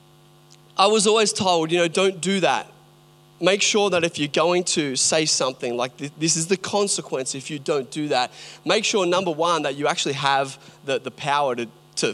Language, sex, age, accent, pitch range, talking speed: English, male, 30-49, Australian, 150-195 Hz, 205 wpm